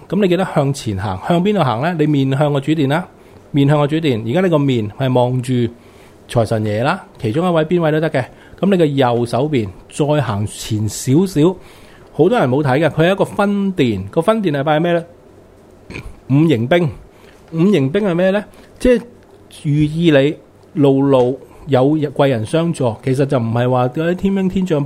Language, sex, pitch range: Chinese, male, 120-165 Hz